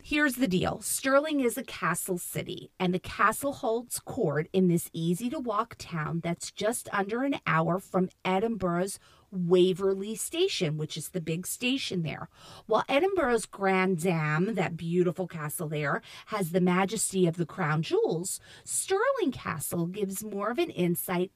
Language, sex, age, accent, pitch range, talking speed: English, female, 40-59, American, 175-230 Hz, 150 wpm